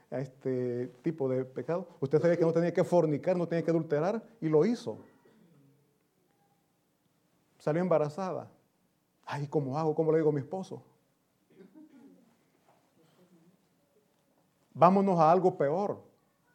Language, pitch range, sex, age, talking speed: Italian, 150-200 Hz, male, 40-59, 125 wpm